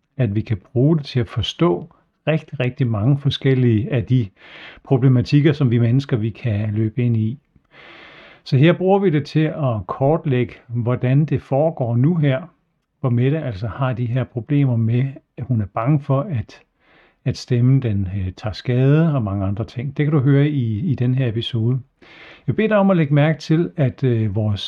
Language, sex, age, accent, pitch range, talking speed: Danish, male, 60-79, native, 120-150 Hz, 195 wpm